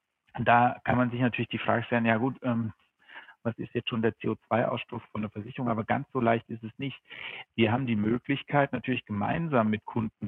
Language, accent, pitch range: German, German, 110-130 Hz